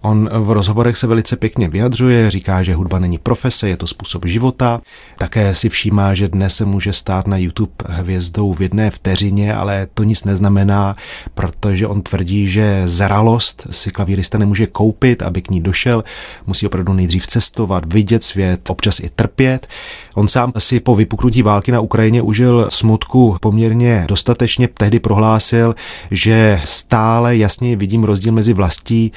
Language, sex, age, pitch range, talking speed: Czech, male, 30-49, 95-110 Hz, 160 wpm